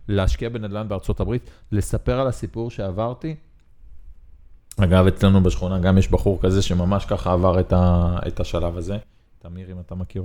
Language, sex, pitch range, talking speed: Hebrew, male, 90-120 Hz, 160 wpm